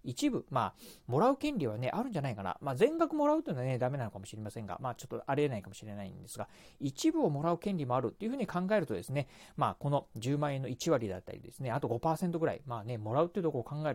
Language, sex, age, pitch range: Japanese, male, 40-59, 120-170 Hz